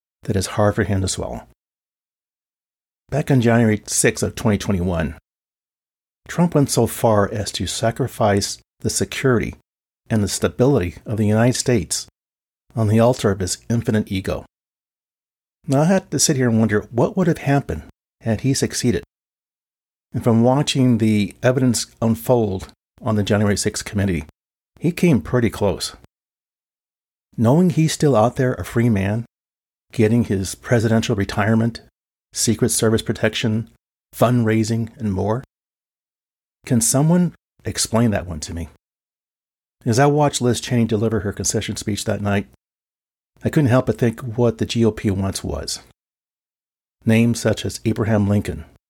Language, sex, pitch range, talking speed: English, male, 100-120 Hz, 145 wpm